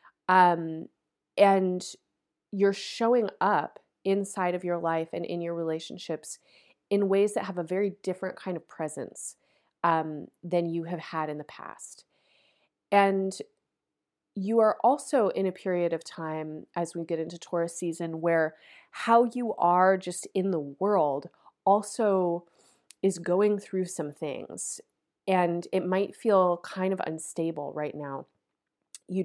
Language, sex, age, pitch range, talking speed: English, female, 30-49, 165-195 Hz, 145 wpm